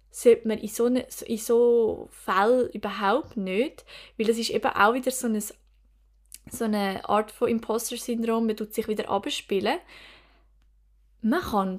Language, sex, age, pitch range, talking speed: German, female, 10-29, 205-250 Hz, 145 wpm